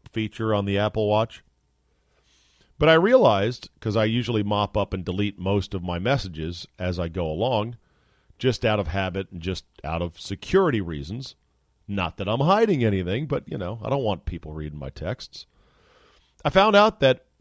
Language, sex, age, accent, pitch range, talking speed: English, male, 40-59, American, 85-125 Hz, 180 wpm